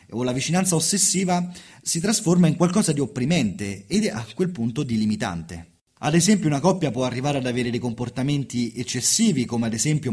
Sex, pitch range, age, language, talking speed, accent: male, 115-175 Hz, 30-49, Italian, 185 wpm, native